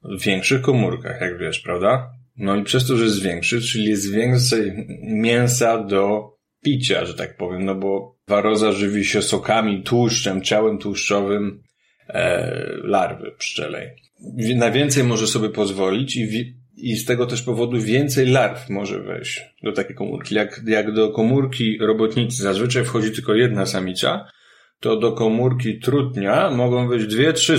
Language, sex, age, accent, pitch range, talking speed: Polish, male, 30-49, native, 110-125 Hz, 155 wpm